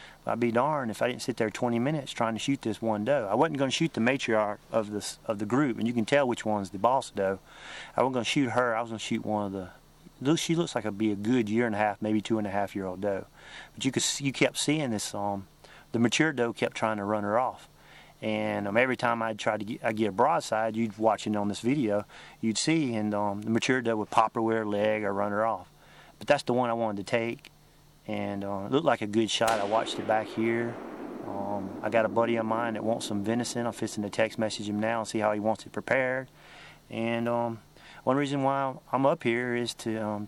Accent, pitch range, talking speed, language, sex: American, 105-125 Hz, 270 wpm, English, male